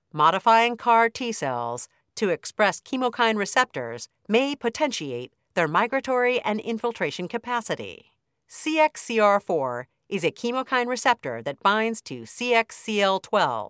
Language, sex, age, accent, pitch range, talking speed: English, female, 50-69, American, 165-250 Hz, 105 wpm